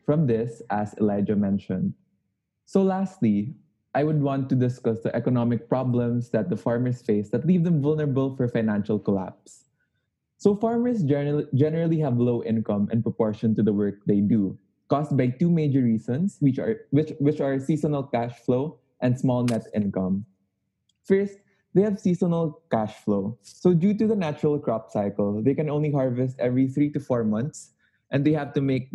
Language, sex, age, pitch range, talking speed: English, male, 20-39, 110-140 Hz, 170 wpm